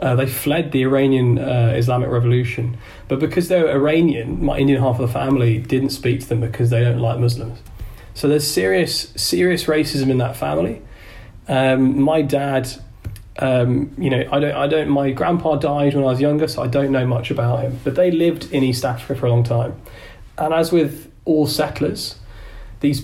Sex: male